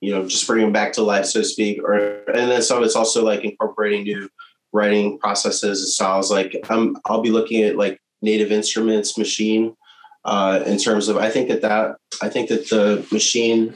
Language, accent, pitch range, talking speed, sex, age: English, American, 100-110 Hz, 210 wpm, male, 20-39